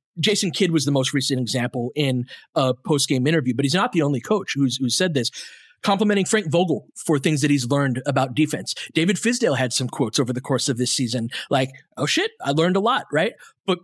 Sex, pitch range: male, 140-200 Hz